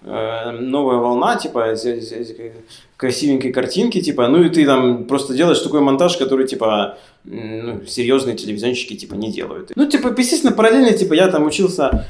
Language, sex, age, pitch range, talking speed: Ukrainian, male, 20-39, 120-140 Hz, 150 wpm